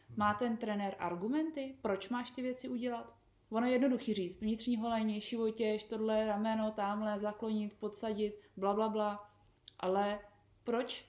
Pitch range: 185-245 Hz